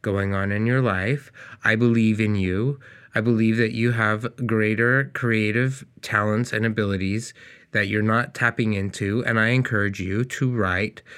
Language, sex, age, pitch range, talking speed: English, male, 20-39, 105-130 Hz, 160 wpm